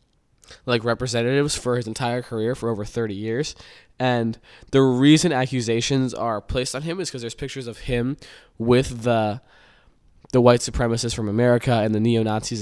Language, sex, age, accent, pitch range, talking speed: English, male, 10-29, American, 110-125 Hz, 160 wpm